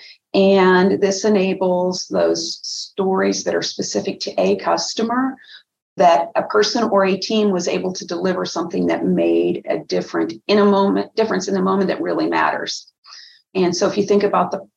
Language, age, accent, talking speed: English, 40-59, American, 175 wpm